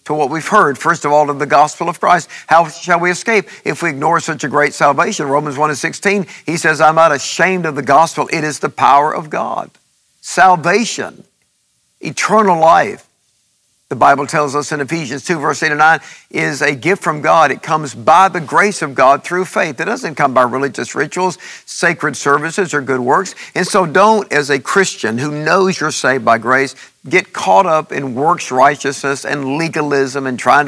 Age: 50-69